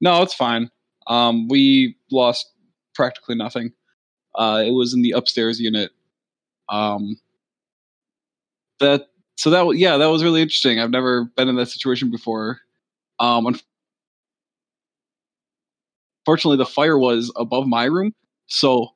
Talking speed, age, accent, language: 125 wpm, 20-39, American, English